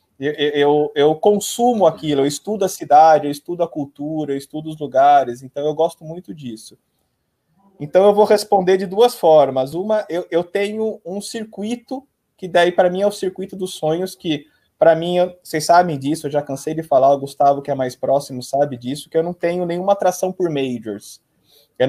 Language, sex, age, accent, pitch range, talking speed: Portuguese, male, 20-39, Brazilian, 145-185 Hz, 195 wpm